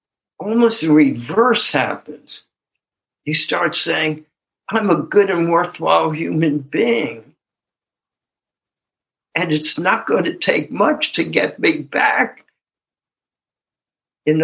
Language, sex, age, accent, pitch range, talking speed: English, male, 60-79, American, 135-165 Hz, 110 wpm